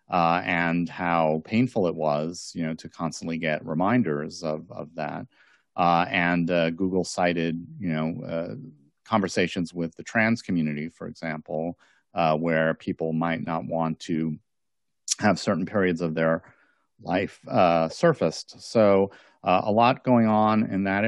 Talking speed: 150 wpm